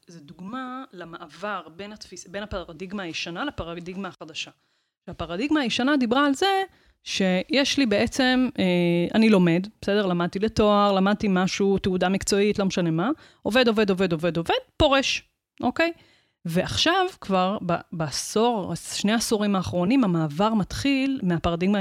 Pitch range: 175-230 Hz